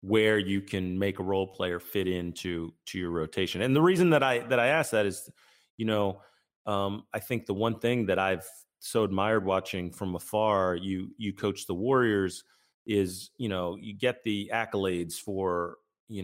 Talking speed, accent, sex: 190 wpm, American, male